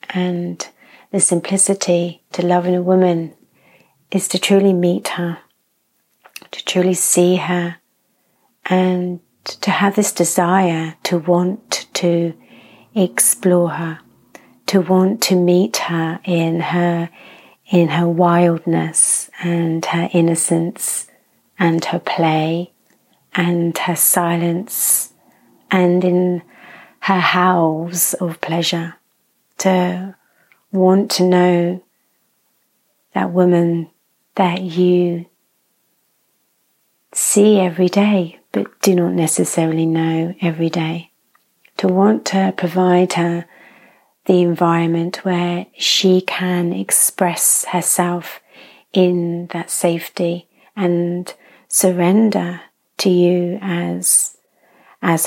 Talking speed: 95 wpm